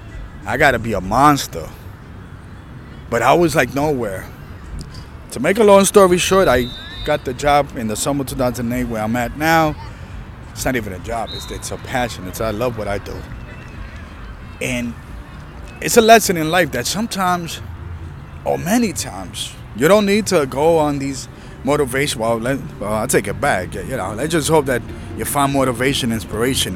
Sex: male